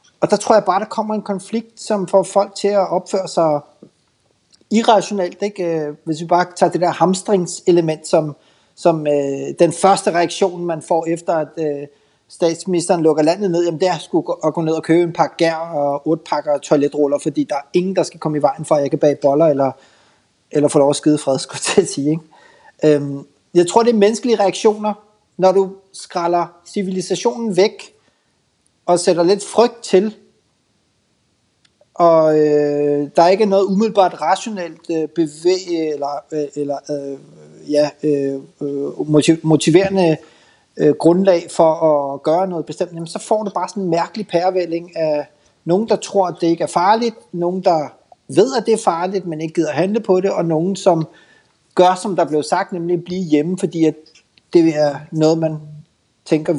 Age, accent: 30-49, native